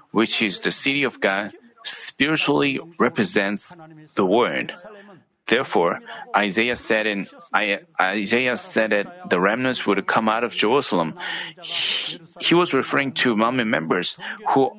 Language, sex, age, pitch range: Korean, male, 30-49, 115-170 Hz